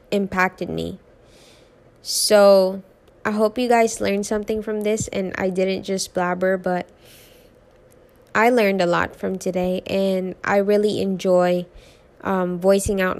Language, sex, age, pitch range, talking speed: English, female, 20-39, 185-215 Hz, 135 wpm